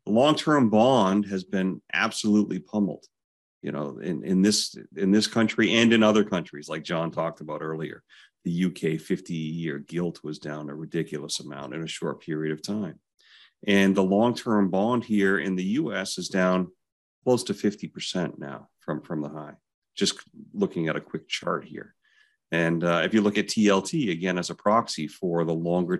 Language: English